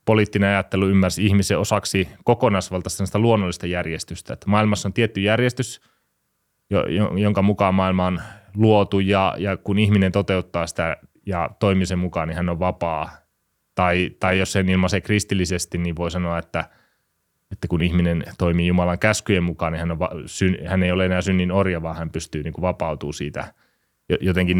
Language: Finnish